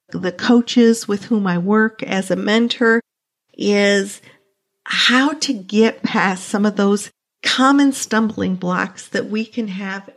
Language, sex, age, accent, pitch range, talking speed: English, female, 50-69, American, 210-255 Hz, 140 wpm